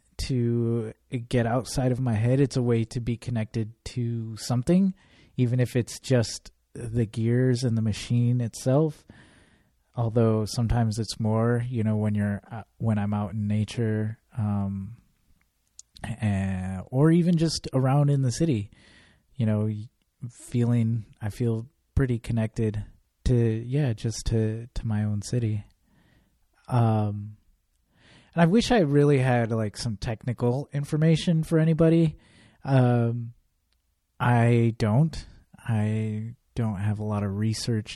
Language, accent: English, American